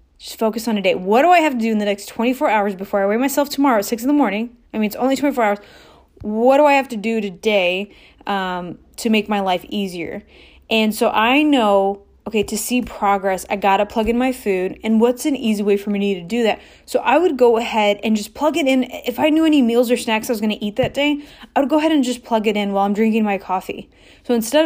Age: 20-39